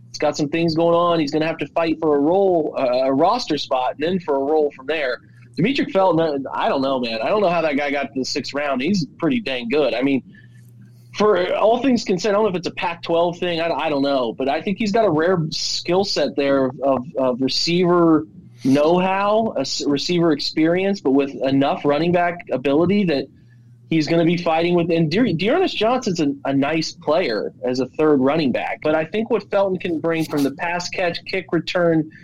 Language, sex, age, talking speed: English, male, 30-49, 225 wpm